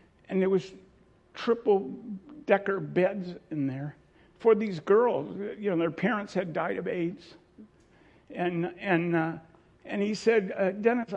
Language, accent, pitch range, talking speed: English, American, 190-250 Hz, 140 wpm